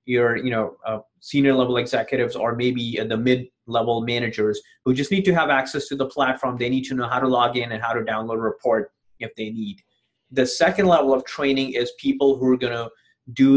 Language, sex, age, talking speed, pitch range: English, male, 30-49, 225 wpm, 120-140 Hz